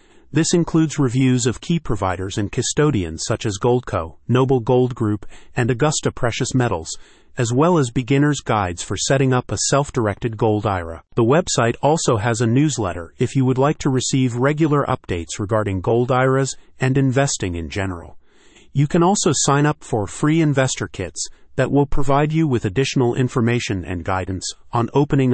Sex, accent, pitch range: male, American, 105-135 Hz